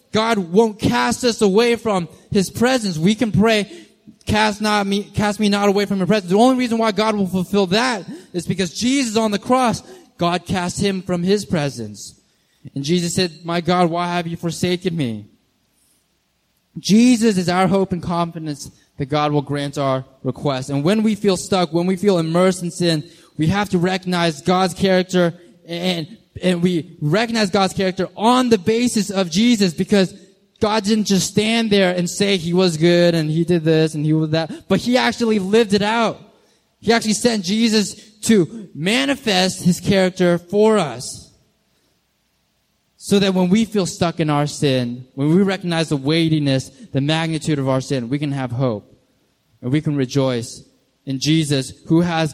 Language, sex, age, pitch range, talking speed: English, male, 20-39, 155-210 Hz, 180 wpm